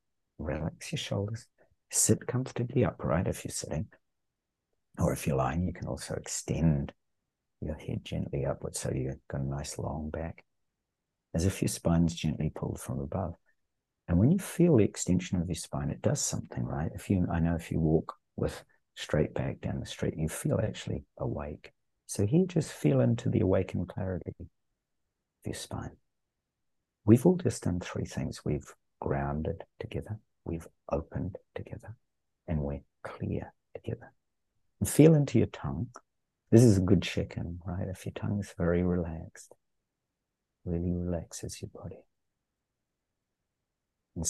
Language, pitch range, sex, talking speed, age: English, 80-105 Hz, male, 155 wpm, 60-79